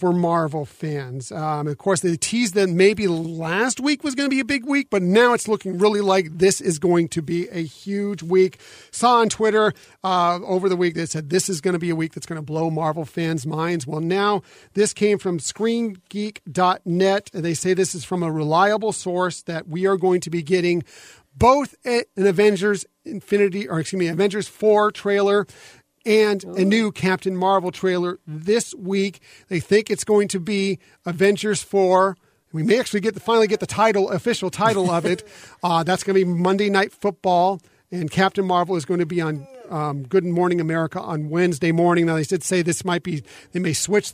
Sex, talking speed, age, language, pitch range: male, 205 wpm, 40-59, English, 170-200 Hz